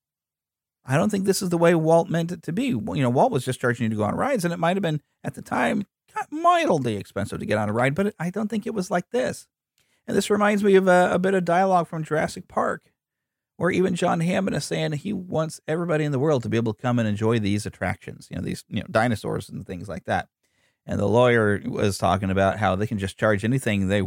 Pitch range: 110-180 Hz